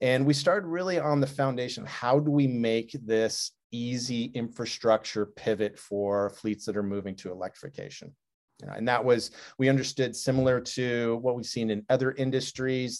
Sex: male